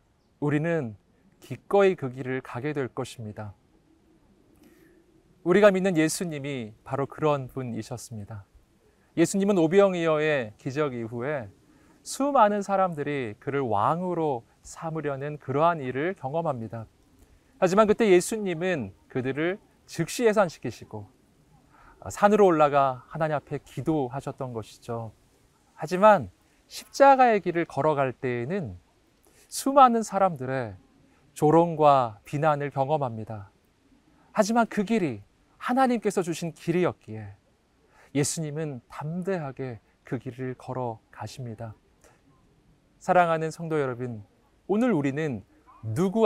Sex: male